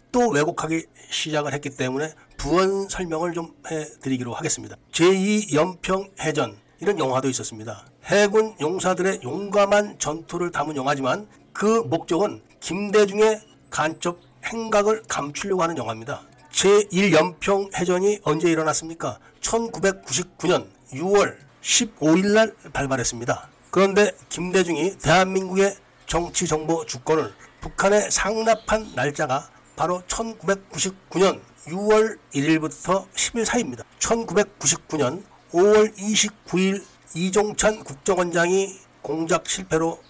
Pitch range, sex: 155-205 Hz, male